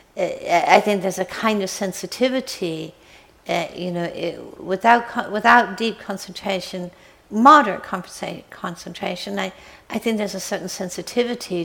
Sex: female